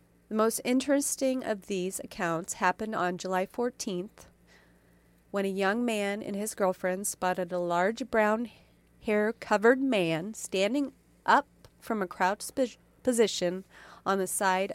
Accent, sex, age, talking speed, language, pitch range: American, female, 30-49, 135 wpm, English, 180-230 Hz